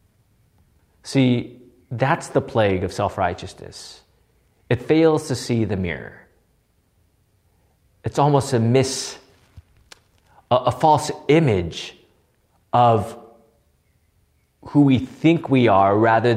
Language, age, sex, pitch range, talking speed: English, 30-49, male, 110-160 Hz, 100 wpm